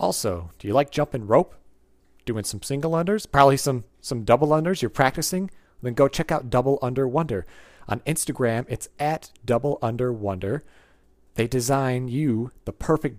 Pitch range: 105-150 Hz